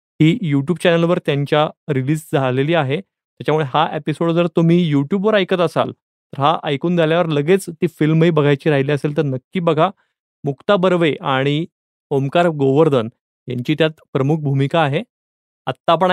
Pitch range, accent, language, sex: 145-180 Hz, native, Marathi, male